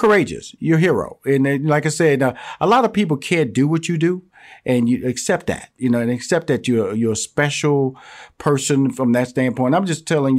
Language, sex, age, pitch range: English, male, 40-59, 115-140 Hz